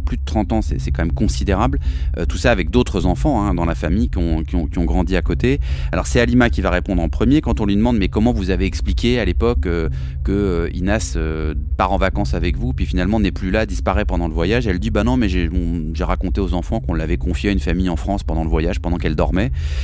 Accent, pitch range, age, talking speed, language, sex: French, 70-95 Hz, 30-49, 270 wpm, French, male